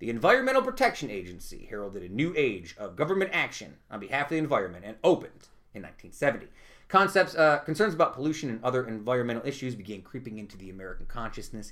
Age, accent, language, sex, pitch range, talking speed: 30-49, American, English, male, 110-160 Hz, 175 wpm